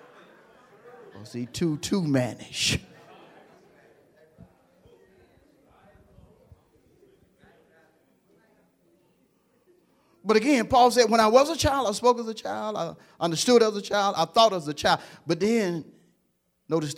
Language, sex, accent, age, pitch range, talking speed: English, male, American, 50-69, 110-170 Hz, 110 wpm